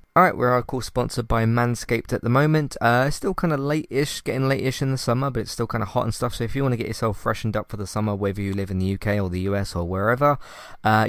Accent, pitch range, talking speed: British, 95-120 Hz, 285 wpm